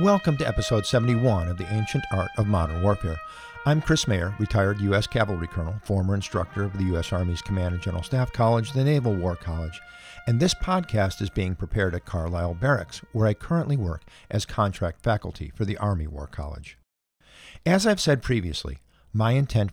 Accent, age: American, 50-69